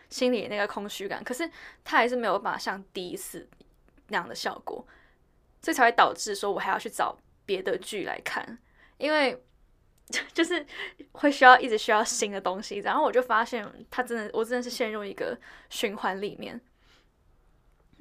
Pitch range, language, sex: 210-275 Hz, Chinese, female